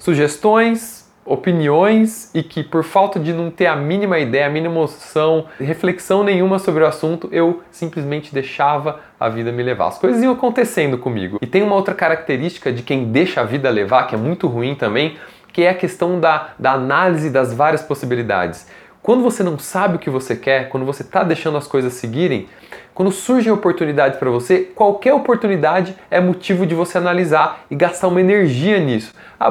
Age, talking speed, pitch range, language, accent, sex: 20-39, 185 wpm, 145-200 Hz, Portuguese, Brazilian, male